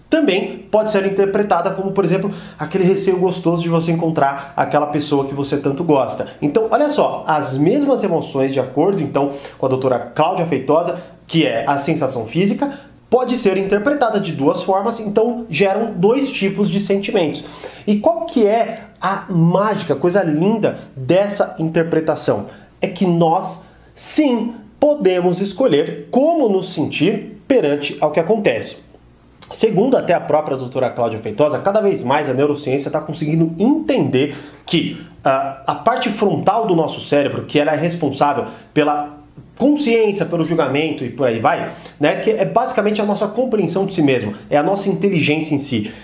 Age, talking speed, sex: 30-49, 160 wpm, male